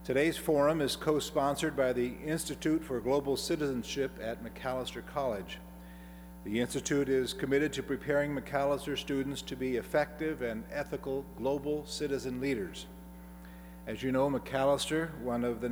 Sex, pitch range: male, 110-145 Hz